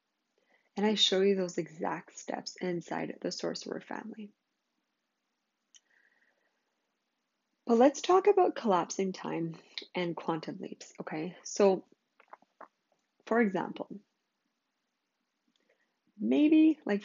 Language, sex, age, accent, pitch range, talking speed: English, female, 20-39, American, 175-225 Hz, 90 wpm